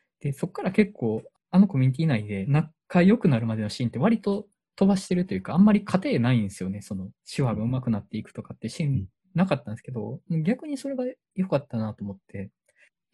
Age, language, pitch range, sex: 20-39, Japanese, 115-185 Hz, male